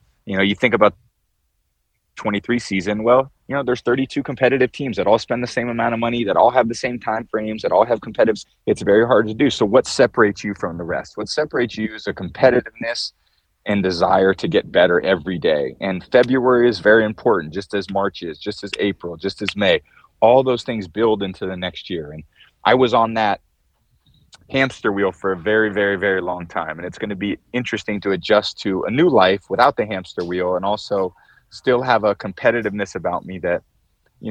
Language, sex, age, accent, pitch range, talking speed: English, male, 30-49, American, 100-125 Hz, 210 wpm